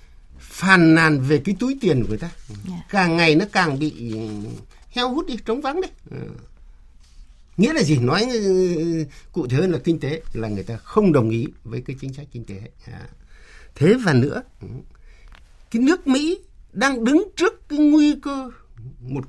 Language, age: Vietnamese, 60-79